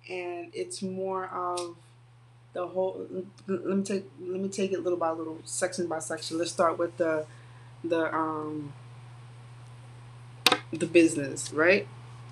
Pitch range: 120-185 Hz